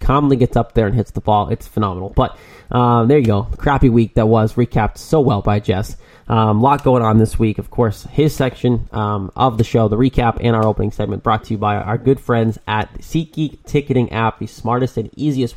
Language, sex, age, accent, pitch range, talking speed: English, male, 20-39, American, 110-130 Hz, 235 wpm